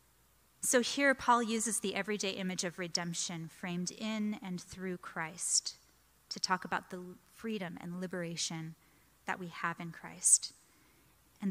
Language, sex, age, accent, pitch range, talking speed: English, female, 30-49, American, 170-210 Hz, 140 wpm